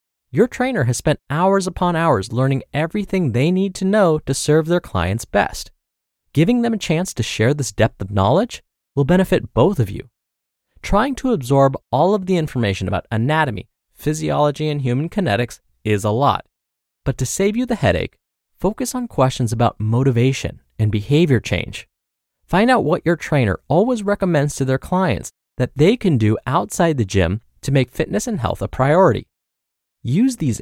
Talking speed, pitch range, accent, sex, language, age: 175 wpm, 110-180 Hz, American, male, English, 20-39